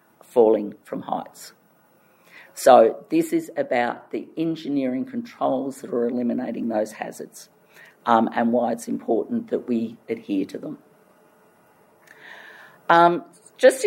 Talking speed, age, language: 115 wpm, 50-69, English